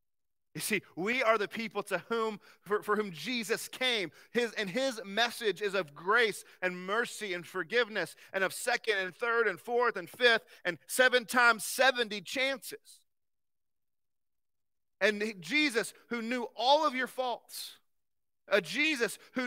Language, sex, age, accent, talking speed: English, male, 40-59, American, 150 wpm